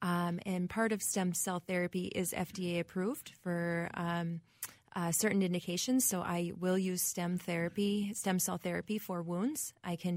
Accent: American